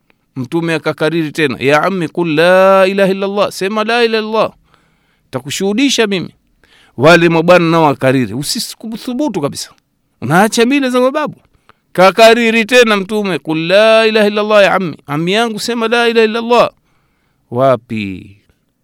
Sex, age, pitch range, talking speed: male, 50-69, 125-195 Hz, 125 wpm